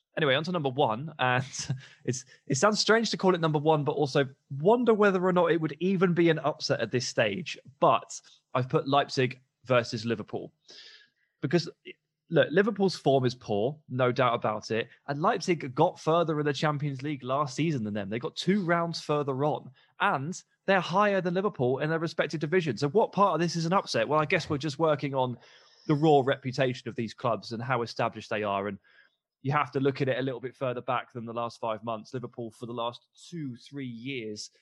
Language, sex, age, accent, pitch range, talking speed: English, male, 20-39, British, 120-155 Hz, 210 wpm